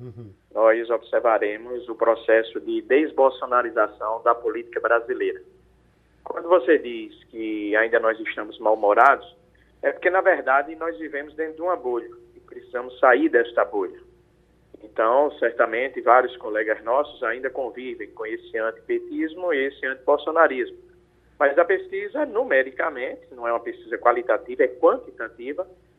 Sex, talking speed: male, 130 wpm